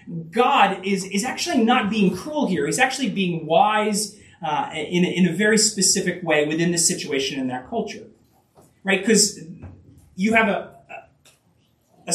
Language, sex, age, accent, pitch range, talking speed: English, male, 30-49, American, 165-225 Hz, 155 wpm